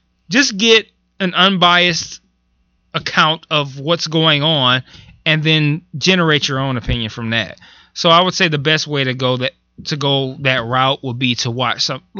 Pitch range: 130-160 Hz